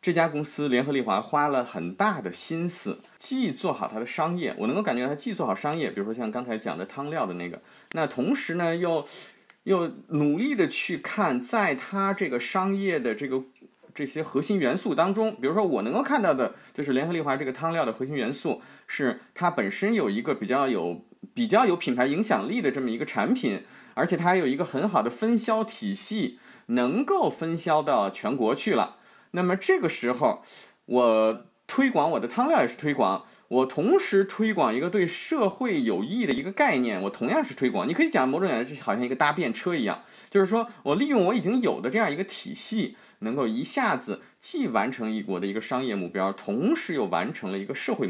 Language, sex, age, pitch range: Chinese, male, 30-49, 130-215 Hz